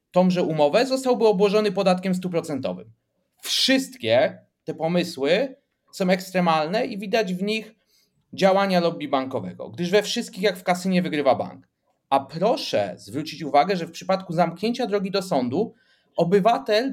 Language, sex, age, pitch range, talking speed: Polish, male, 30-49, 175-220 Hz, 135 wpm